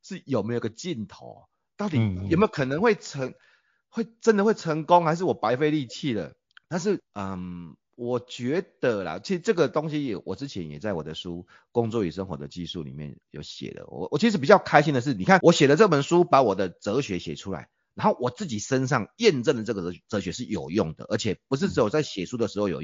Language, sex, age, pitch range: Chinese, male, 30-49, 95-155 Hz